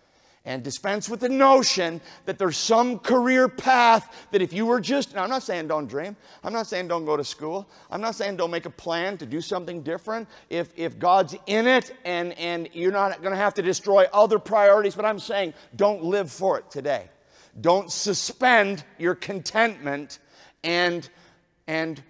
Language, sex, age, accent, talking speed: English, male, 50-69, American, 185 wpm